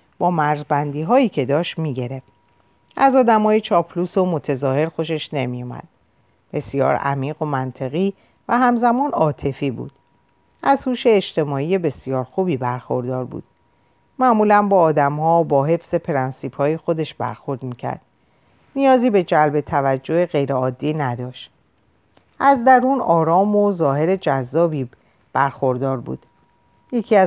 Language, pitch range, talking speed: Persian, 130-190 Hz, 115 wpm